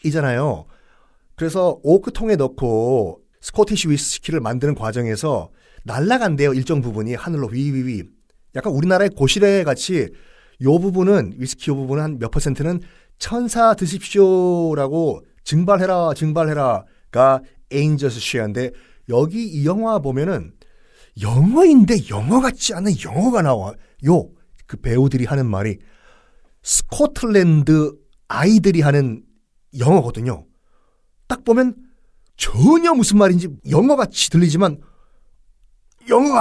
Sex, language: male, Korean